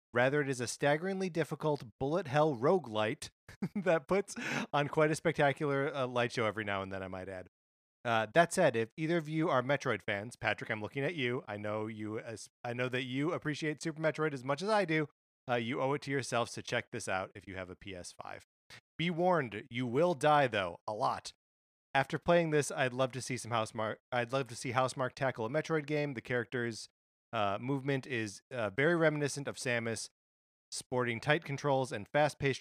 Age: 30-49